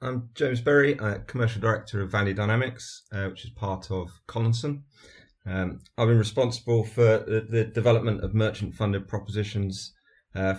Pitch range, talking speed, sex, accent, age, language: 95-110 Hz, 160 wpm, male, British, 30-49, English